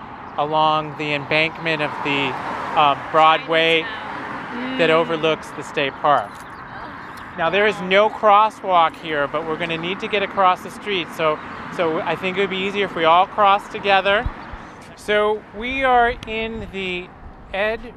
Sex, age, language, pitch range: male, 30-49, English, 165-215 Hz